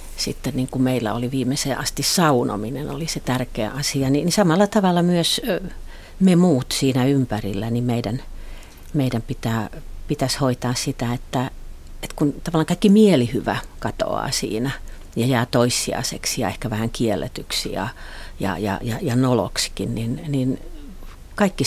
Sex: female